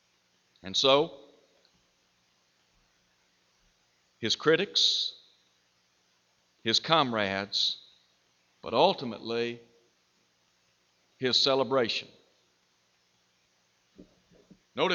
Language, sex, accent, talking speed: English, male, American, 45 wpm